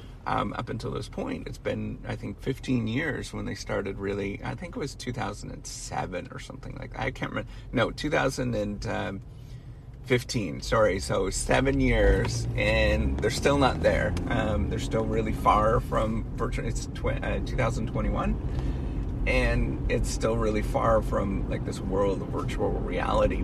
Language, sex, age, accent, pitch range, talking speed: English, male, 30-49, American, 100-130 Hz, 150 wpm